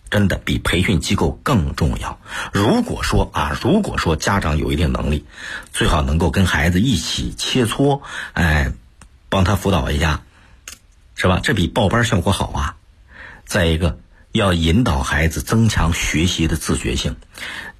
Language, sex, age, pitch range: Chinese, male, 50-69, 80-115 Hz